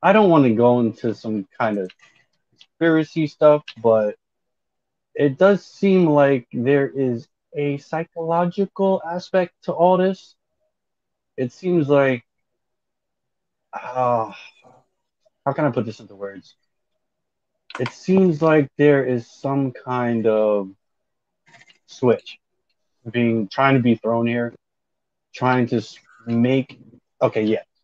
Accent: American